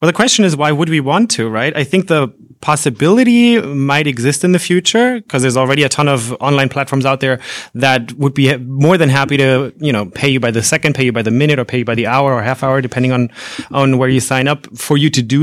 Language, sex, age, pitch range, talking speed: English, male, 30-49, 130-155 Hz, 265 wpm